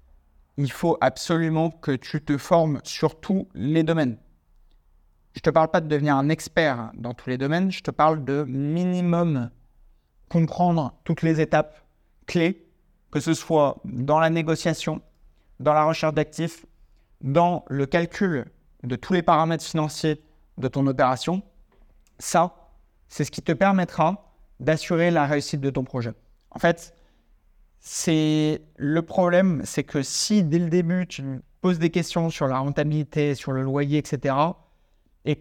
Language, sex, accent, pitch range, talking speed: French, male, French, 135-165 Hz, 155 wpm